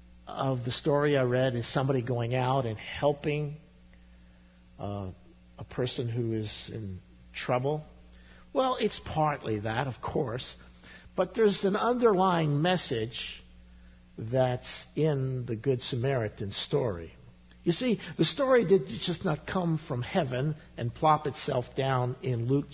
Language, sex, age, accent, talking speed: English, male, 50-69, American, 135 wpm